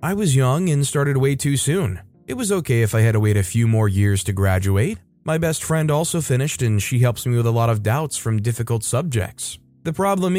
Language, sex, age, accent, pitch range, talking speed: English, male, 20-39, American, 110-140 Hz, 235 wpm